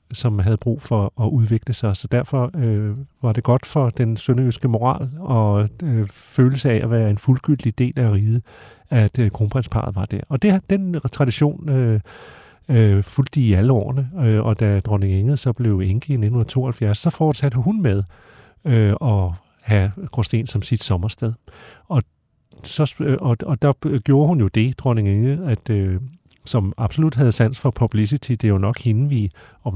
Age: 40-59